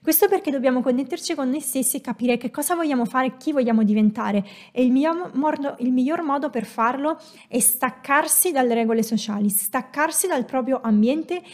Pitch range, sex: 225-285 Hz, female